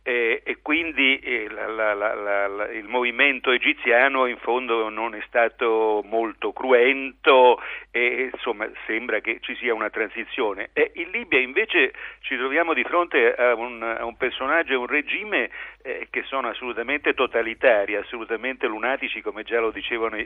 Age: 50-69